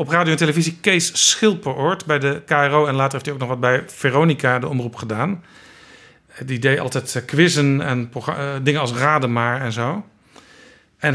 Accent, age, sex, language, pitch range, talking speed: Dutch, 50-69, male, Dutch, 140-175 Hz, 180 wpm